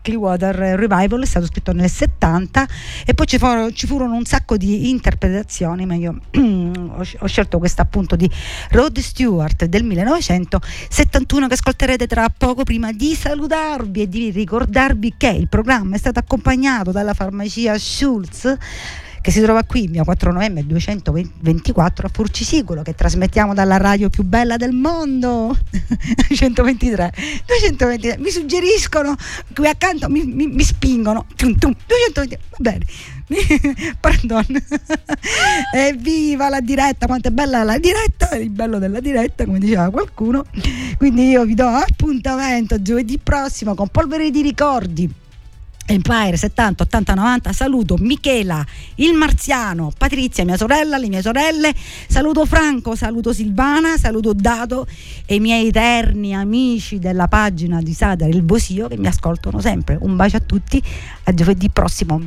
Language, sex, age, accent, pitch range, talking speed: Italian, female, 50-69, native, 195-270 Hz, 140 wpm